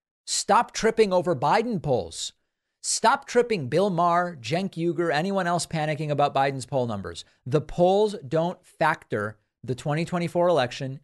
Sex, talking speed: male, 135 wpm